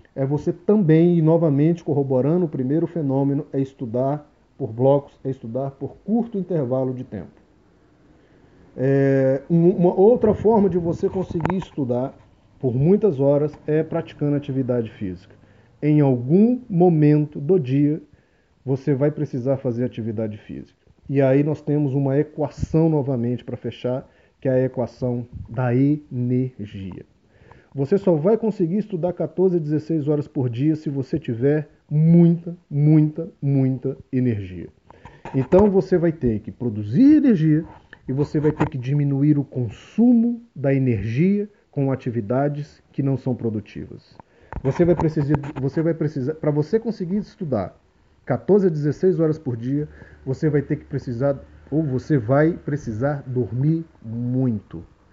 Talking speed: 135 wpm